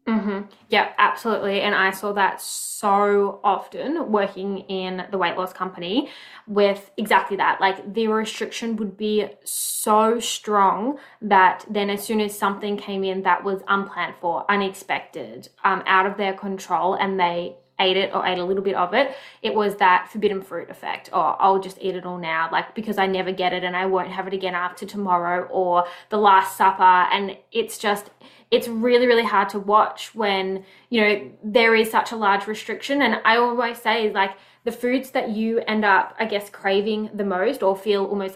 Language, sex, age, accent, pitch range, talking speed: English, female, 20-39, Australian, 190-220 Hz, 190 wpm